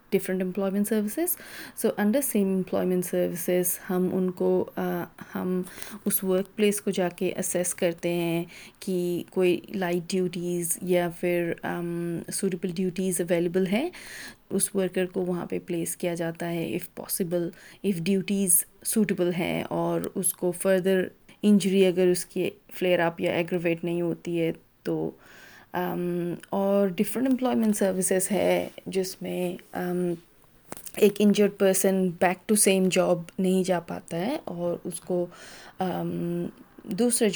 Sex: female